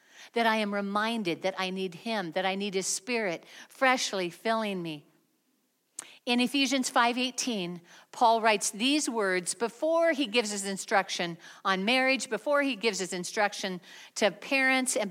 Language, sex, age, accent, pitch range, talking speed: English, female, 50-69, American, 200-275 Hz, 150 wpm